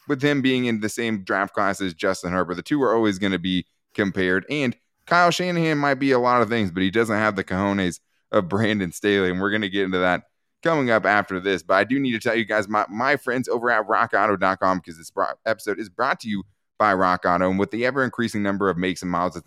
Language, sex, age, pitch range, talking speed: English, male, 20-39, 95-120 Hz, 260 wpm